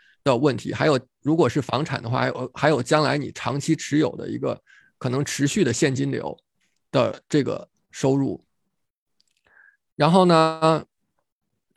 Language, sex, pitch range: Chinese, male, 135-165 Hz